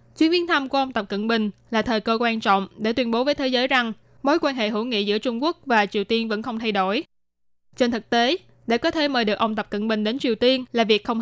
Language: Vietnamese